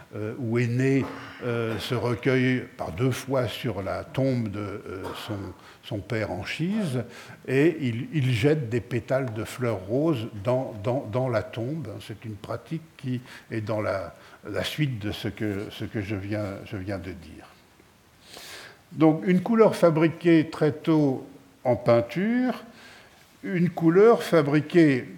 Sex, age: male, 70-89